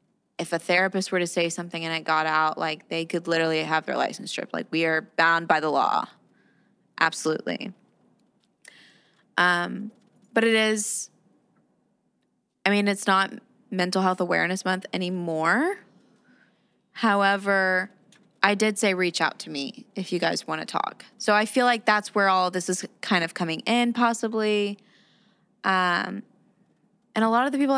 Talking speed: 160 wpm